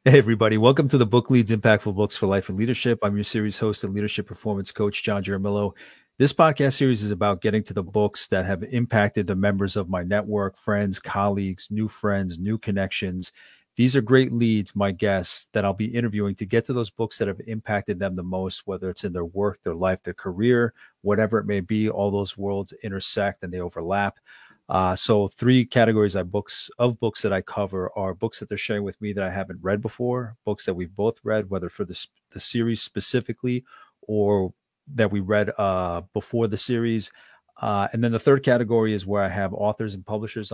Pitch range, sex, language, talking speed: 100-115 Hz, male, English, 205 wpm